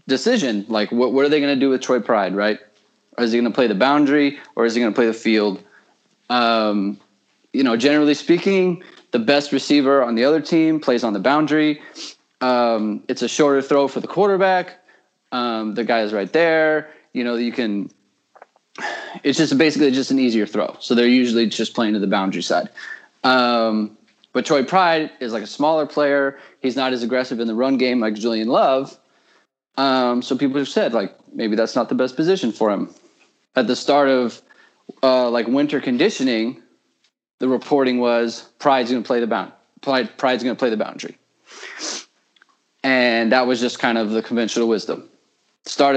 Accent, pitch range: American, 115-145 Hz